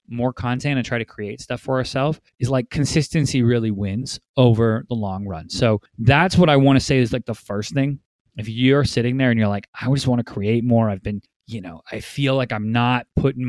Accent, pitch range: American, 110-135 Hz